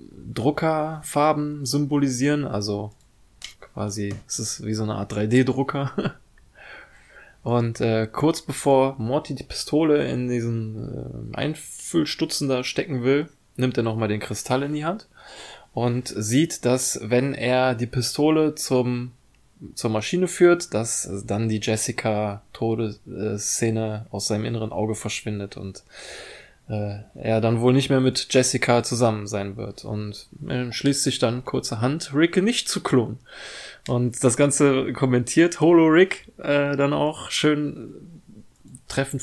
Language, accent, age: German, German, 20-39